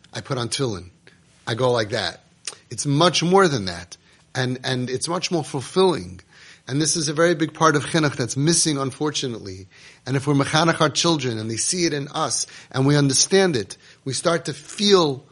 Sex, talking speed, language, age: male, 200 wpm, English, 30-49